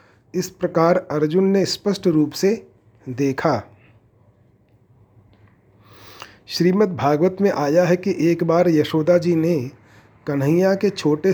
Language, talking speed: Hindi, 115 wpm